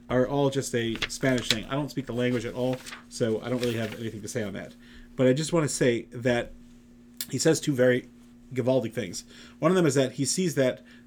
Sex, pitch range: male, 120-140 Hz